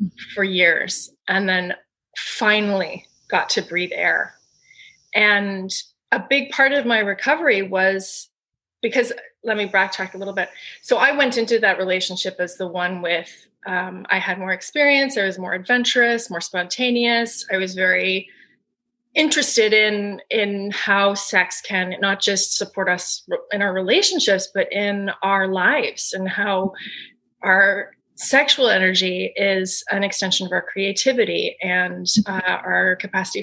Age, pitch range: 20-39, 185-230 Hz